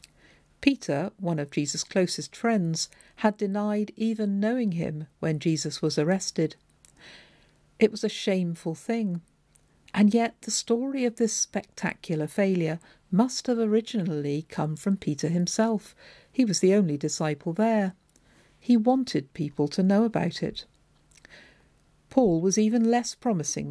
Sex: female